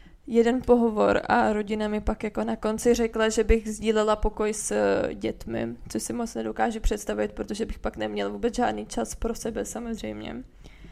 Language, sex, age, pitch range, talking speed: Czech, female, 20-39, 210-230 Hz, 170 wpm